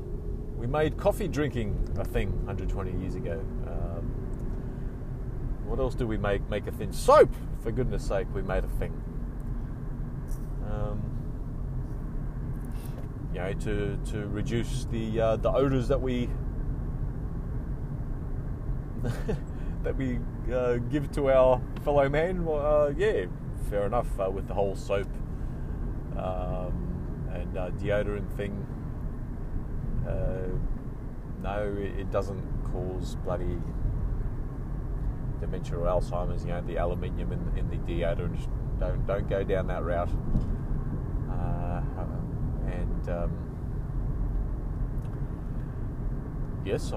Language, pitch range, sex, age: English, 100-130 Hz, male, 30-49